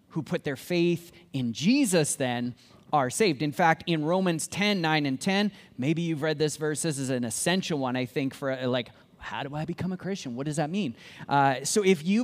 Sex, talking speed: male, 220 wpm